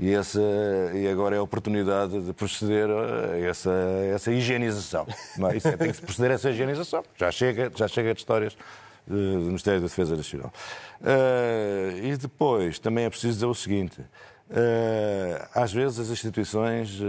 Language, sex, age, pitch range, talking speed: Portuguese, male, 50-69, 100-120 Hz, 140 wpm